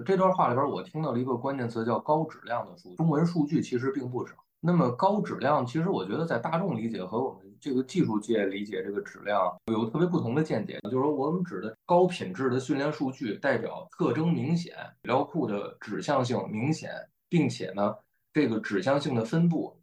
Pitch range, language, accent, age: 115-170 Hz, Chinese, native, 20-39